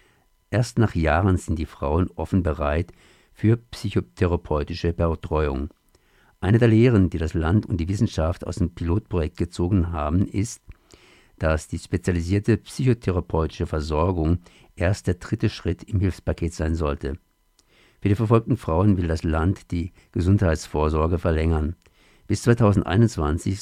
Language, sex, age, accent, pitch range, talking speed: German, male, 50-69, German, 80-100 Hz, 130 wpm